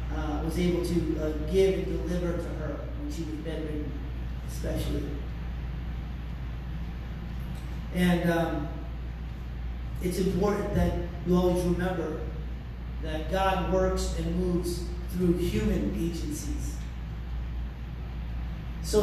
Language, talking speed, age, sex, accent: English, 100 wpm, 40-59, male, American